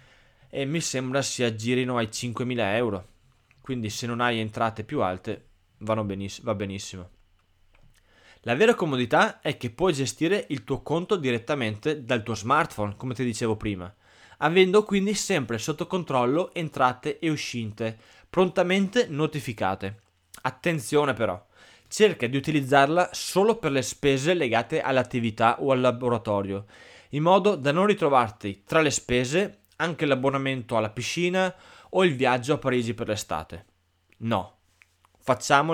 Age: 20-39